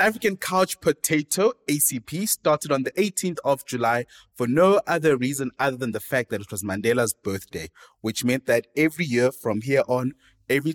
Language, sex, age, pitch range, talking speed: English, male, 20-39, 110-155 Hz, 180 wpm